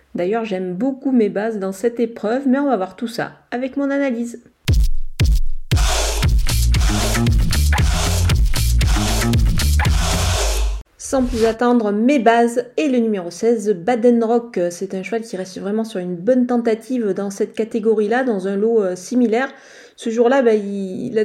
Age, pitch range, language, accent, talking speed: 40-59, 200-245 Hz, French, French, 140 wpm